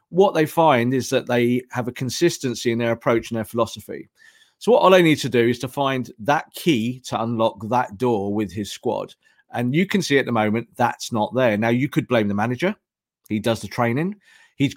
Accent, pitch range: British, 115-150 Hz